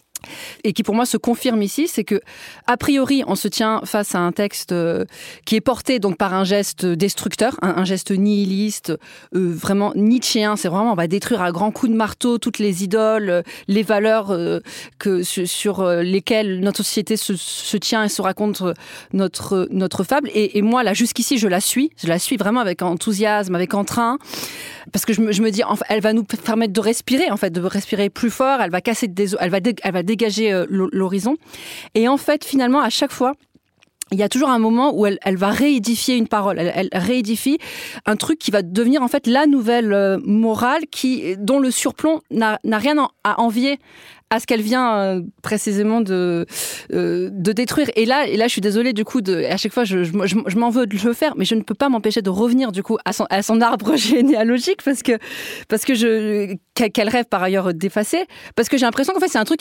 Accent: French